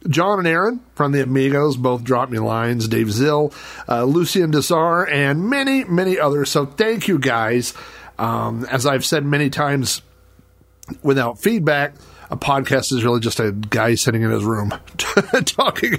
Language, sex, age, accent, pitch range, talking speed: English, male, 40-59, American, 120-165 Hz, 160 wpm